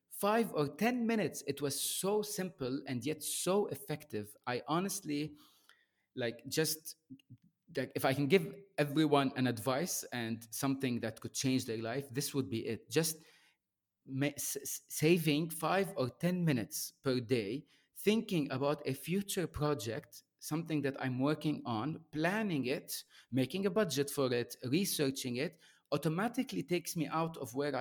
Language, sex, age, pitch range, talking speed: English, male, 30-49, 120-155 Hz, 145 wpm